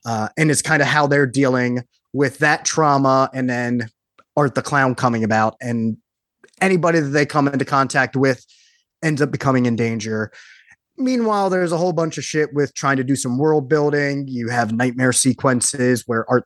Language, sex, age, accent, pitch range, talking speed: English, male, 20-39, American, 125-155 Hz, 185 wpm